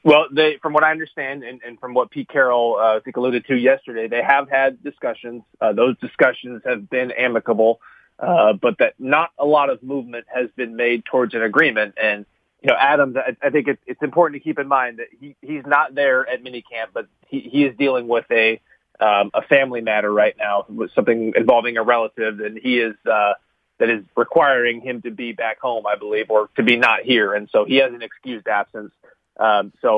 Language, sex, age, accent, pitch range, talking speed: English, male, 30-49, American, 115-140 Hz, 215 wpm